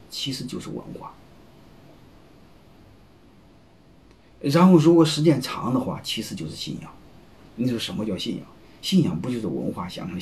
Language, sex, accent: Chinese, male, native